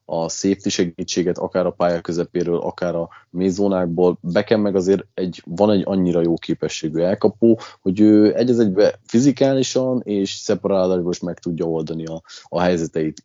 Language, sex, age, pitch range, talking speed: Hungarian, male, 30-49, 90-110 Hz, 150 wpm